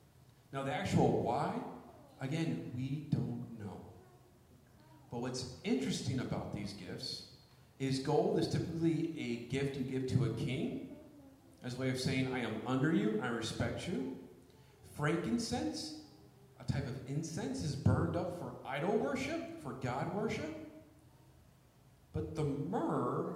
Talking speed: 140 wpm